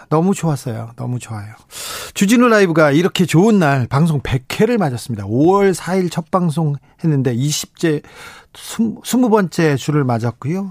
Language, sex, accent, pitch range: Korean, male, native, 130-180 Hz